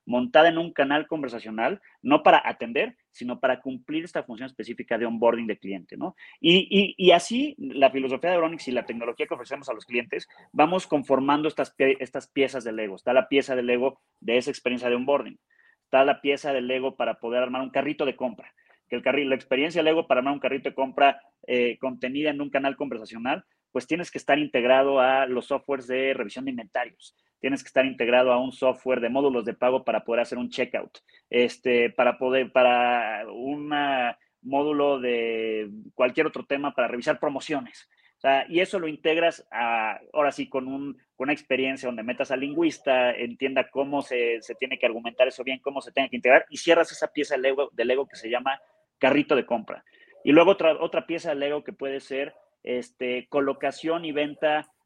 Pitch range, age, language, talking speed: 125-150 Hz, 30-49, Spanish, 200 wpm